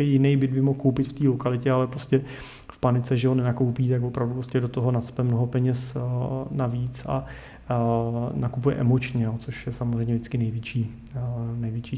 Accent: native